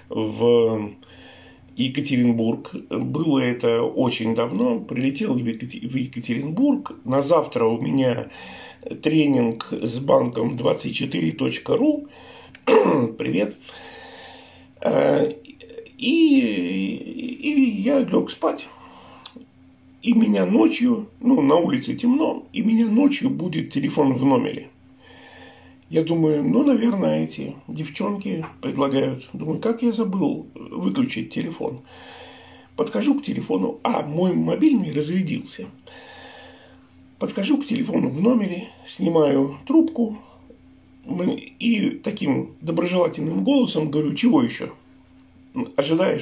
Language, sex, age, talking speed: Russian, male, 50-69, 95 wpm